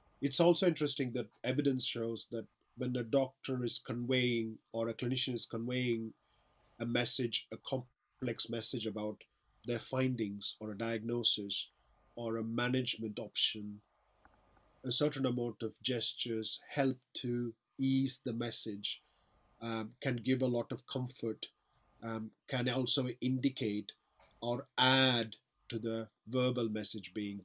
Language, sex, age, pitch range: English, male, 40-59, 110-125 Hz